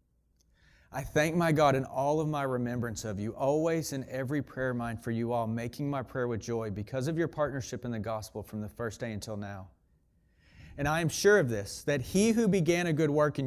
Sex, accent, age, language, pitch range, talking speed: male, American, 40-59, English, 115-150 Hz, 225 wpm